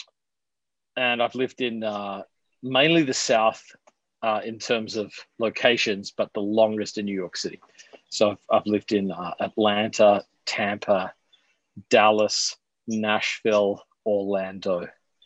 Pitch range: 105-135 Hz